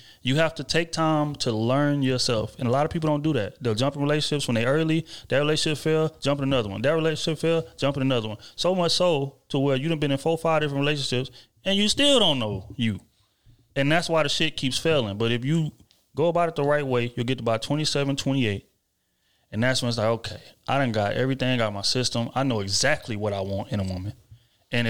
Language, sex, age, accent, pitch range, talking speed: English, male, 30-49, American, 115-145 Hz, 245 wpm